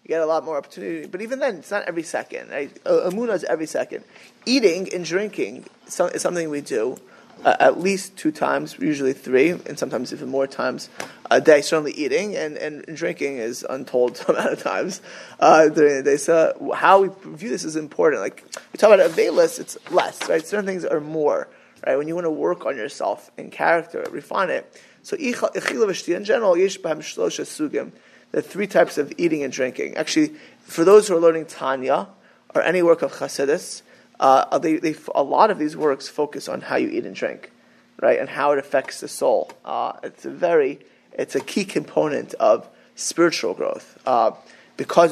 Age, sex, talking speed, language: 20-39, male, 190 wpm, English